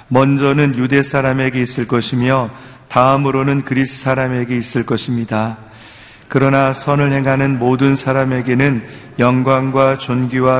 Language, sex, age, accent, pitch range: Korean, male, 40-59, native, 125-135 Hz